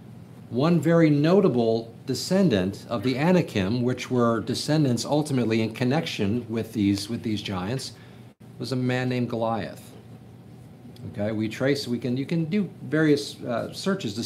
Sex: male